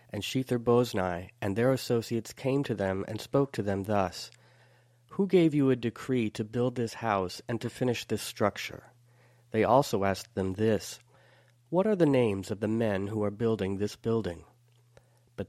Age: 40-59